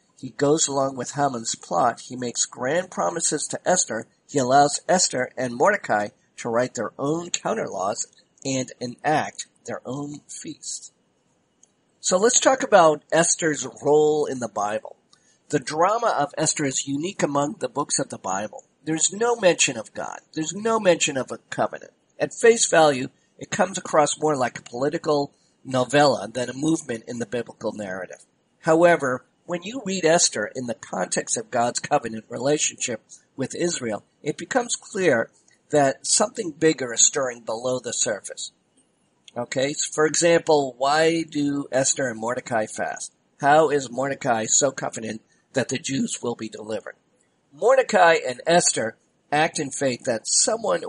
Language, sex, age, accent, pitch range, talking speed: English, male, 50-69, American, 130-165 Hz, 155 wpm